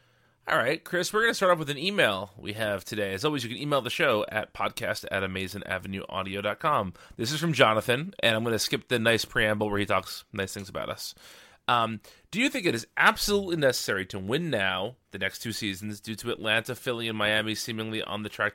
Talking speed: 220 wpm